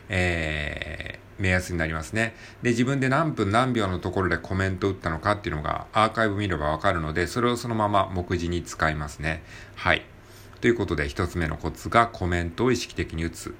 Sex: male